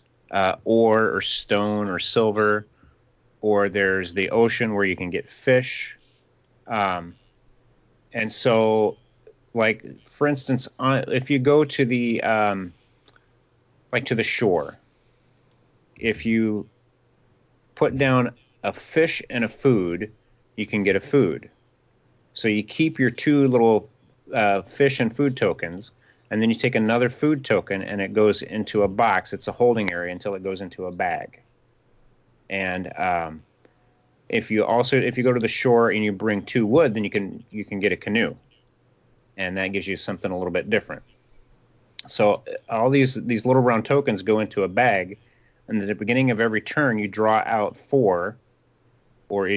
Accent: American